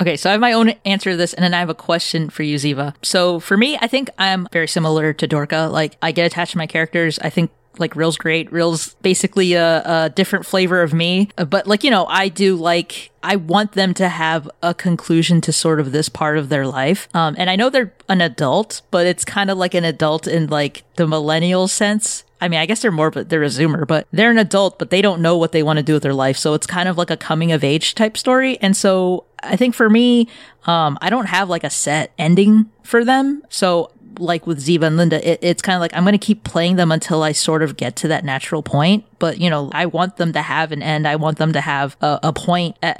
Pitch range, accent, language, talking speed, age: 155-195 Hz, American, English, 260 wpm, 20-39